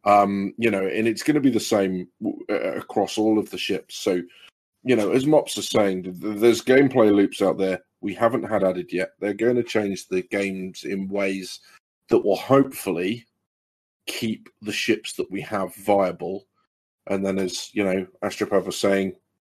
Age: 30-49